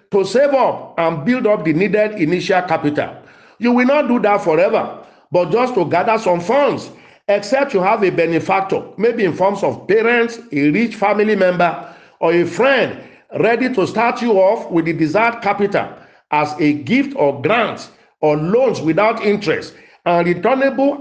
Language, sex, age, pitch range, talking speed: English, male, 50-69, 165-225 Hz, 170 wpm